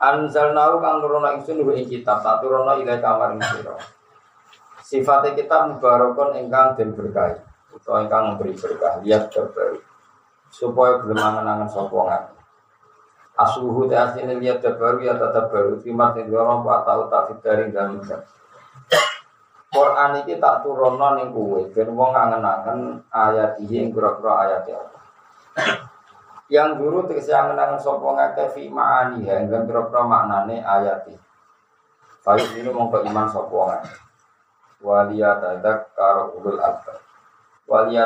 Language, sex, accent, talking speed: Indonesian, male, native, 95 wpm